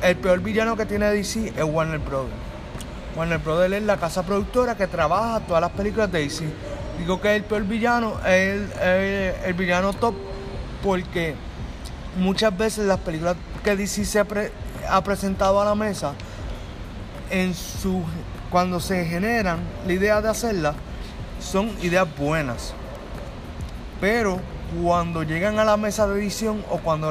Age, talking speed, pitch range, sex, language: 30-49, 155 wpm, 160-205 Hz, male, Spanish